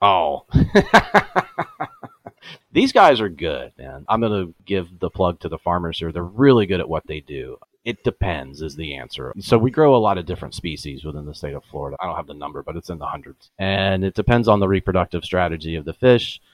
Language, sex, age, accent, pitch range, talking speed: English, male, 30-49, American, 80-95 Hz, 220 wpm